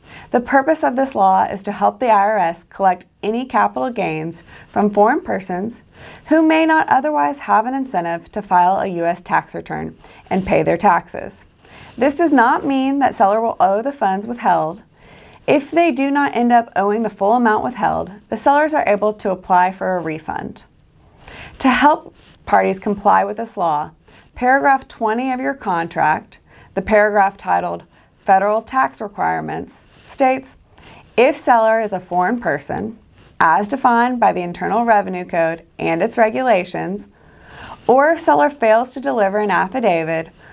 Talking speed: 160 wpm